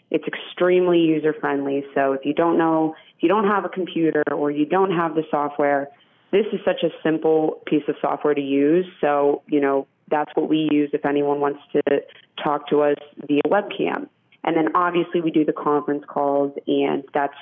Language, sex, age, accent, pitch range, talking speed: English, female, 20-39, American, 145-180 Hz, 195 wpm